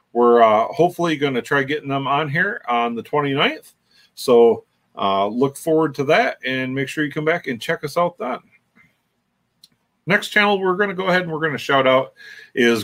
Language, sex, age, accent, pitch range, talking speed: English, male, 40-59, American, 130-180 Hz, 205 wpm